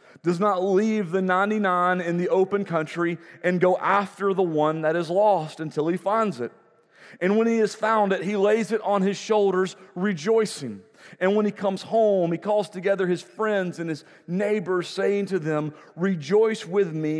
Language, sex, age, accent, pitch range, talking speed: English, male, 40-59, American, 170-205 Hz, 185 wpm